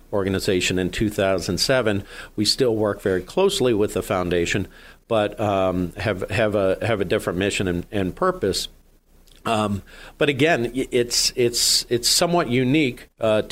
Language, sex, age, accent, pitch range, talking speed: English, male, 50-69, American, 95-115 Hz, 140 wpm